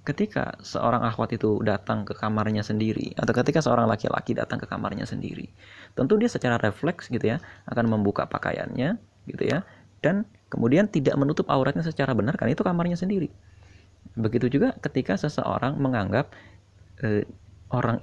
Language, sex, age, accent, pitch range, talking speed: Indonesian, male, 20-39, native, 100-135 Hz, 150 wpm